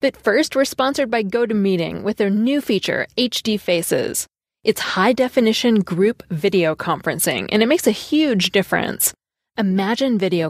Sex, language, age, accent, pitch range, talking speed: female, English, 20-39, American, 170-230 Hz, 145 wpm